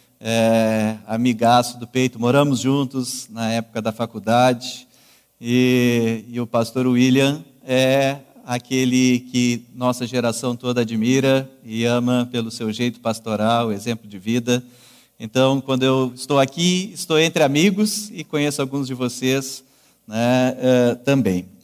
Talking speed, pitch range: 130 wpm, 125-175 Hz